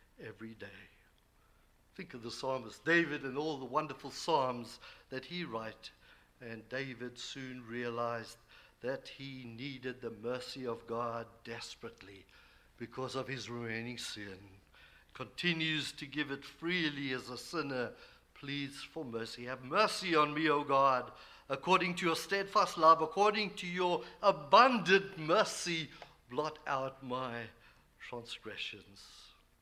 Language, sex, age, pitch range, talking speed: English, male, 60-79, 125-160 Hz, 130 wpm